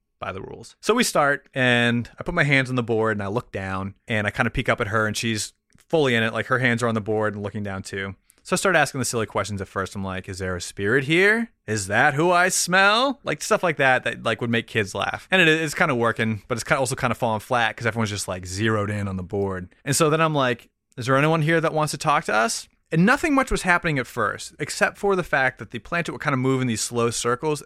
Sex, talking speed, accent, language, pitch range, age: male, 285 wpm, American, English, 105-135 Hz, 30-49